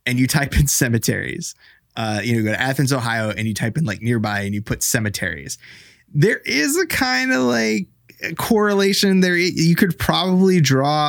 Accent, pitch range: American, 100-135 Hz